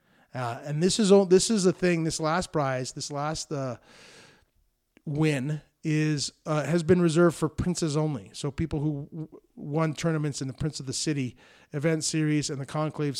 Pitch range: 135-165 Hz